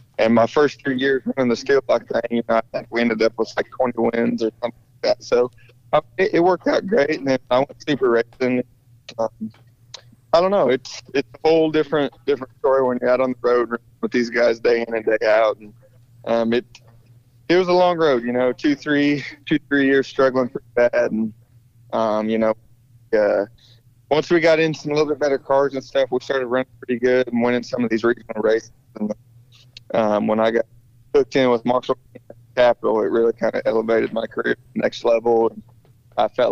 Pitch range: 115-130 Hz